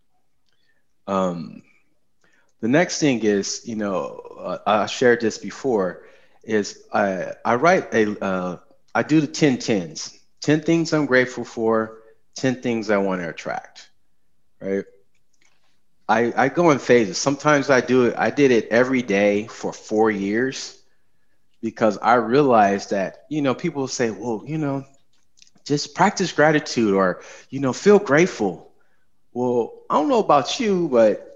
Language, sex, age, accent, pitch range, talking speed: English, male, 30-49, American, 100-145 Hz, 150 wpm